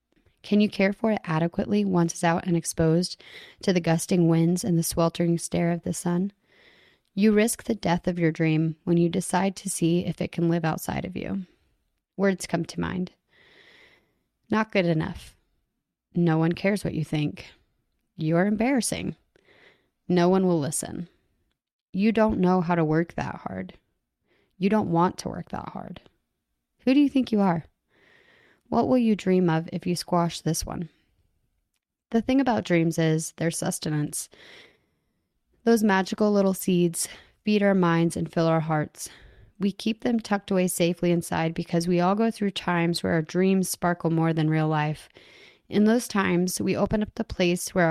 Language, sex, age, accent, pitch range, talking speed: English, female, 30-49, American, 170-205 Hz, 175 wpm